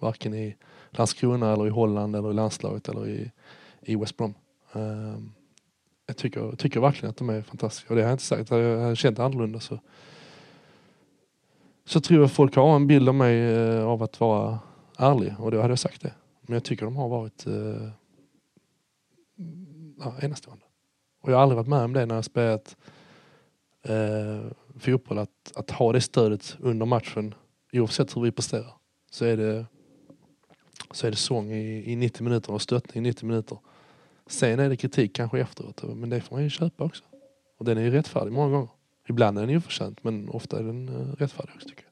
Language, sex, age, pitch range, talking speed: English, male, 20-39, 110-140 Hz, 185 wpm